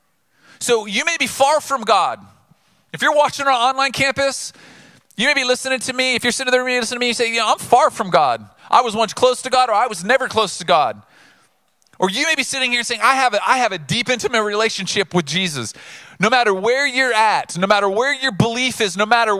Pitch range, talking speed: 195-255 Hz, 230 wpm